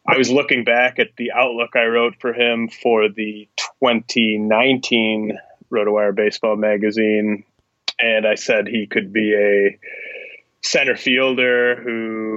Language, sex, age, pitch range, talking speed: English, male, 20-39, 105-120 Hz, 130 wpm